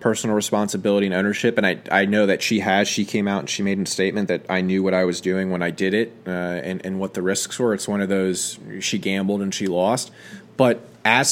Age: 20-39